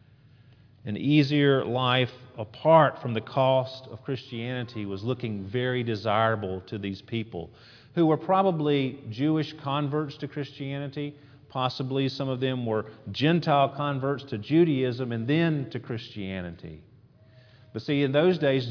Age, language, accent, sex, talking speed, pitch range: 40-59, English, American, male, 130 wpm, 115-145 Hz